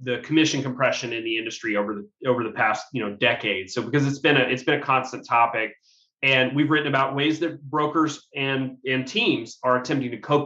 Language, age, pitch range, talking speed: English, 30-49, 125-150 Hz, 220 wpm